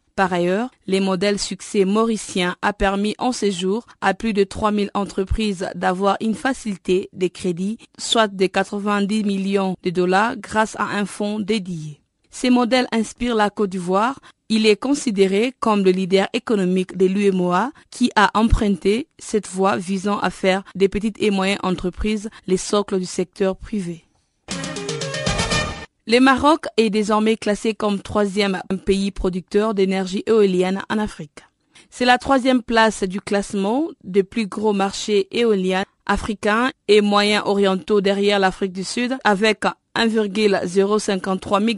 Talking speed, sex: 140 wpm, female